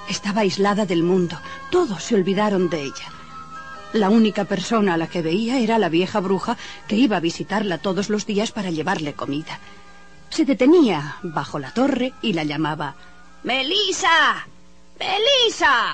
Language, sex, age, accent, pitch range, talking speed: Spanish, female, 40-59, Spanish, 180-270 Hz, 150 wpm